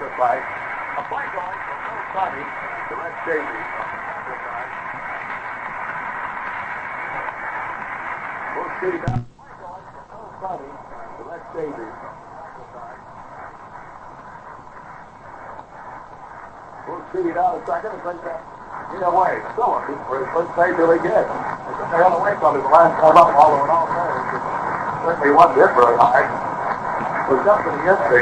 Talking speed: 110 wpm